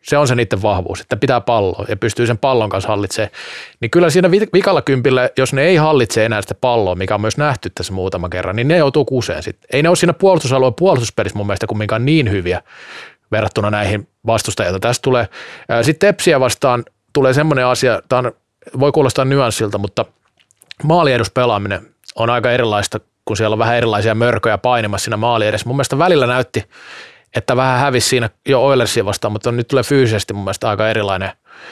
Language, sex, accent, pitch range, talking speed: Finnish, male, native, 110-140 Hz, 175 wpm